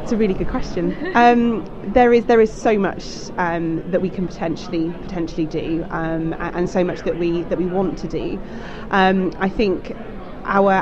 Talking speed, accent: 190 wpm, British